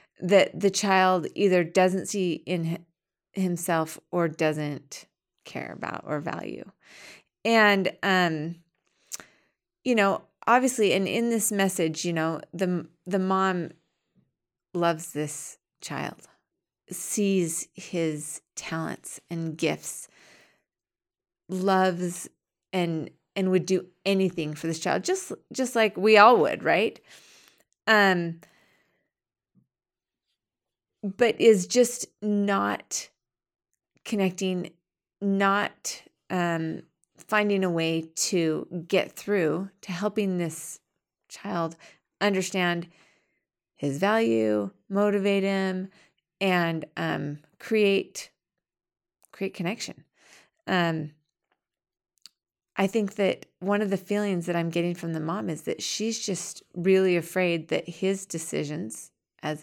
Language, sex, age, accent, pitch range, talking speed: English, female, 30-49, American, 165-195 Hz, 105 wpm